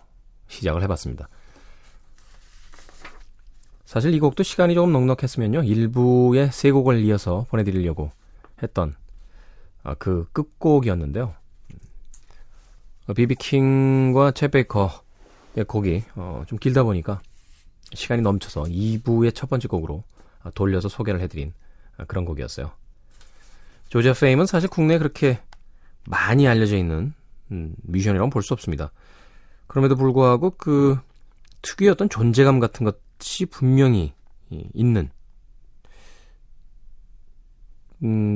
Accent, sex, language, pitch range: native, male, Korean, 85-130 Hz